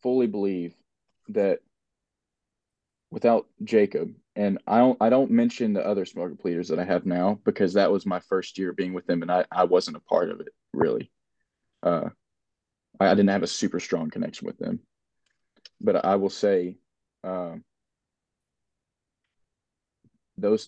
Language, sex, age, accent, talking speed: English, male, 20-39, American, 155 wpm